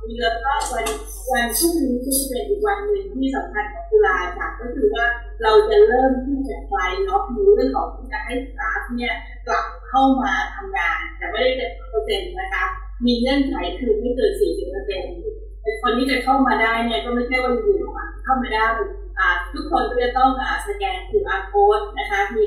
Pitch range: 260-415 Hz